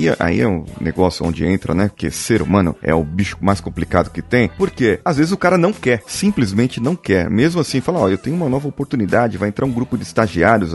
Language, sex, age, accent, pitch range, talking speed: Portuguese, male, 30-49, Brazilian, 95-120 Hz, 240 wpm